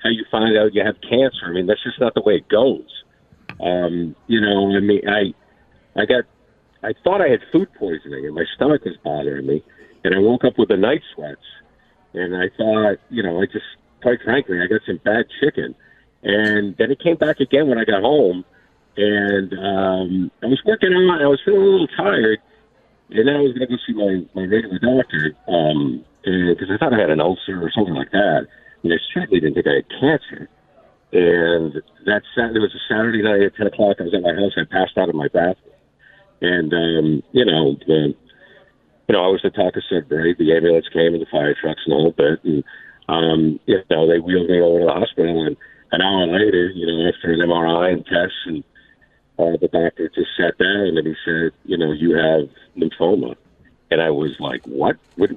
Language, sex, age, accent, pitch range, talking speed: English, male, 50-69, American, 85-110 Hz, 225 wpm